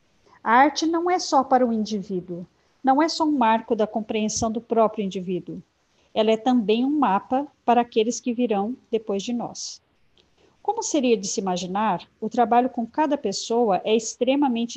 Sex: female